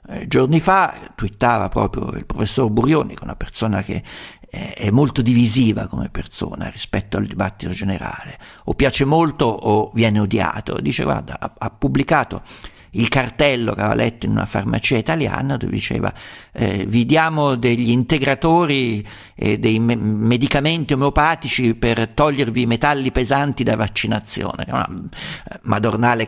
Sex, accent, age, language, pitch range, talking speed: male, native, 50-69, Italian, 105-140 Hz, 140 wpm